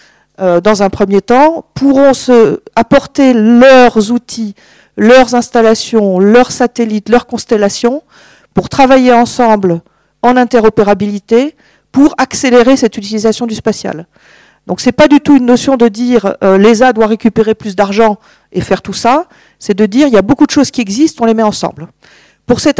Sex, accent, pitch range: female, French, 200-250 Hz